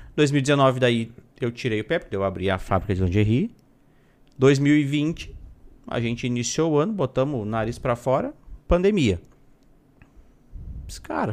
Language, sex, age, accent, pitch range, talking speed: Portuguese, male, 40-59, Brazilian, 115-160 Hz, 140 wpm